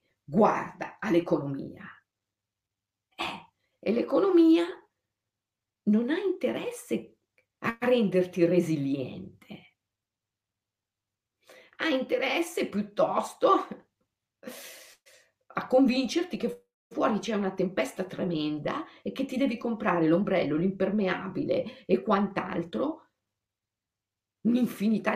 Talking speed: 75 wpm